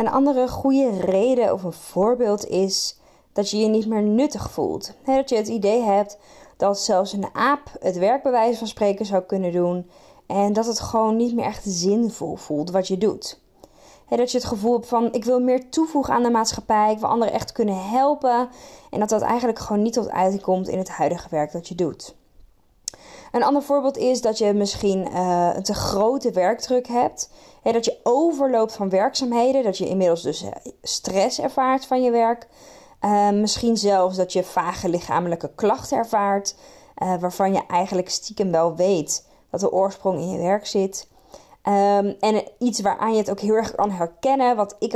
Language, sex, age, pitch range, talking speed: Dutch, female, 20-39, 195-240 Hz, 190 wpm